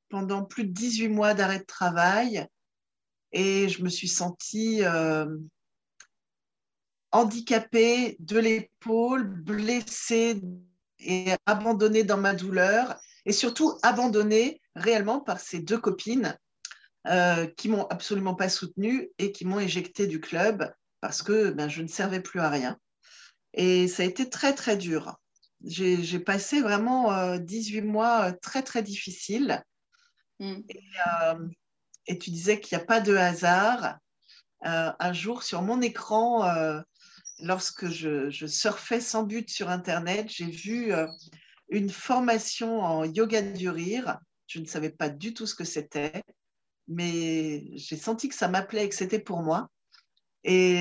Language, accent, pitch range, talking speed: French, French, 175-225 Hz, 150 wpm